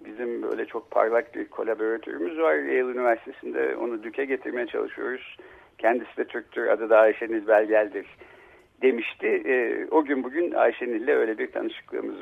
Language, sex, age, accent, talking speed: Turkish, male, 60-79, native, 135 wpm